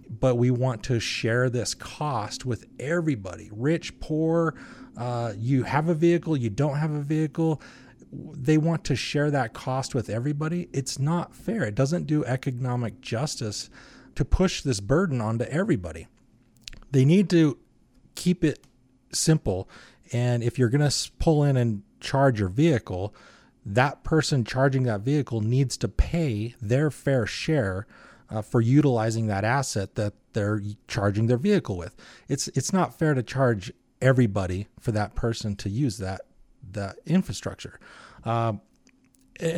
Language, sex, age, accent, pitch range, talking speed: English, male, 30-49, American, 110-150 Hz, 150 wpm